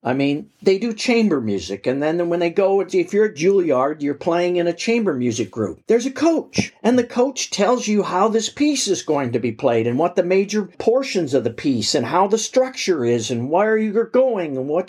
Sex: male